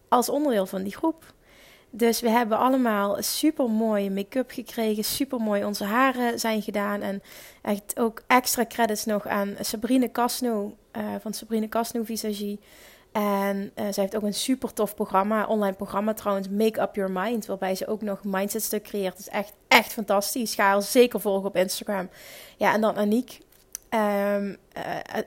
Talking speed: 170 wpm